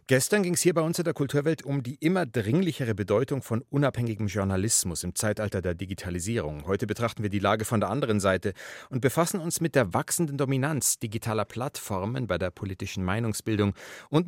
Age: 40-59